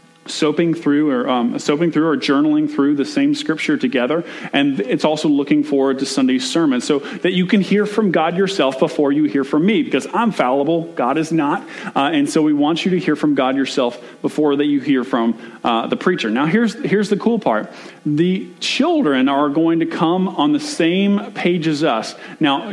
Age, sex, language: 40-59, male, English